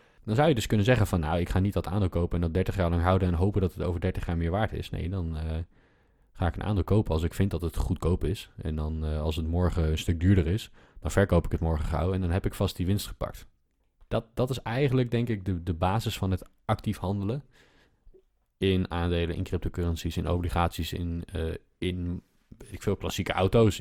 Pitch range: 85-100 Hz